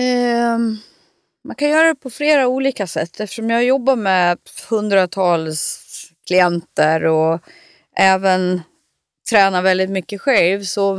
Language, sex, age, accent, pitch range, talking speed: Swedish, female, 30-49, native, 175-225 Hz, 115 wpm